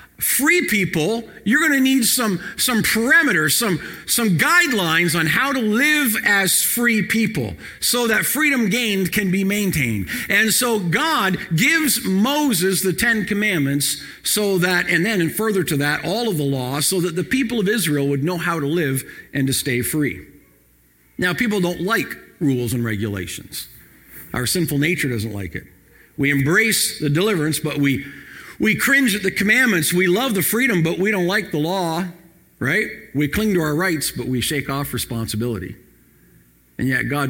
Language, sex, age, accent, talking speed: English, male, 50-69, American, 175 wpm